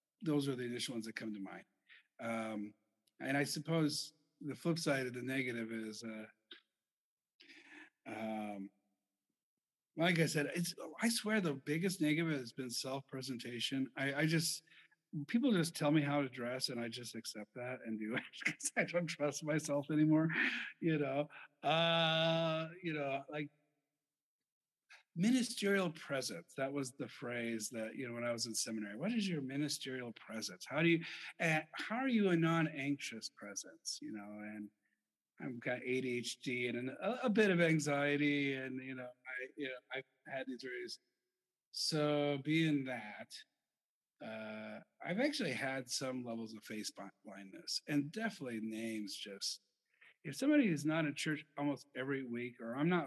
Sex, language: male, English